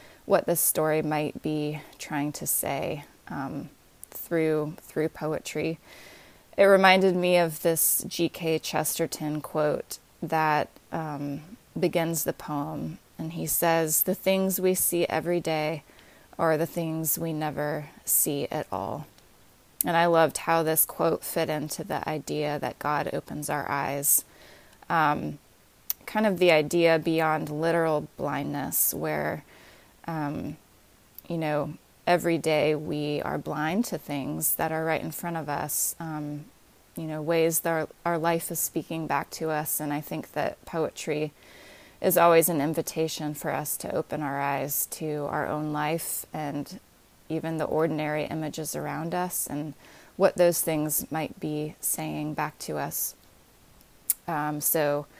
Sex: female